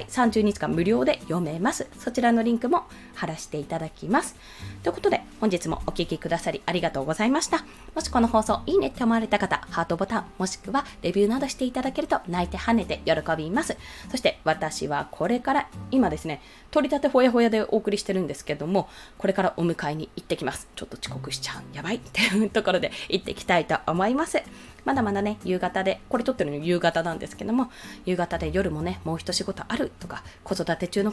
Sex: female